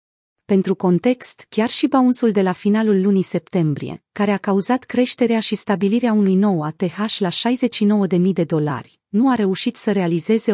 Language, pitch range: Romanian, 180-230 Hz